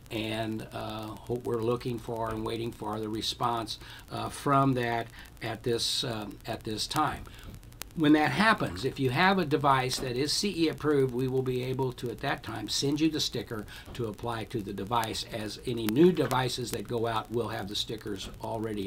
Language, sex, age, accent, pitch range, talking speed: English, male, 60-79, American, 115-135 Hz, 195 wpm